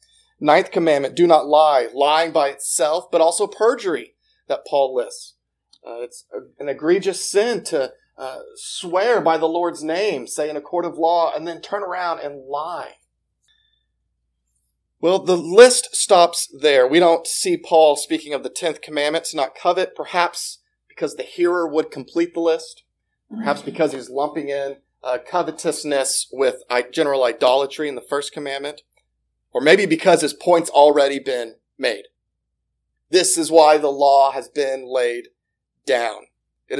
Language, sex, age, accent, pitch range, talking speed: English, male, 40-59, American, 145-235 Hz, 155 wpm